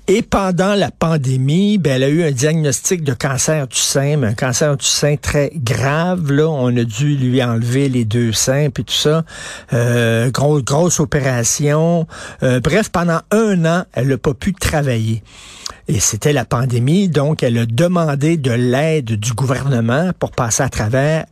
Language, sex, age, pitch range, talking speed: French, male, 60-79, 125-165 Hz, 175 wpm